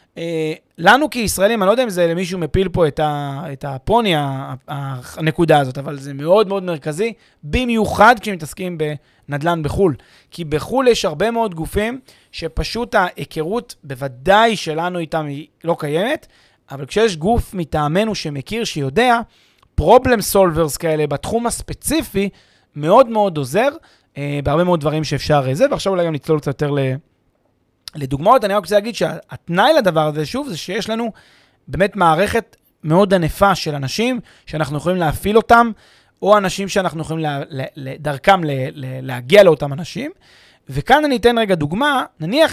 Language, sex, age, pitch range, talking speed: Hebrew, male, 30-49, 150-210 Hz, 150 wpm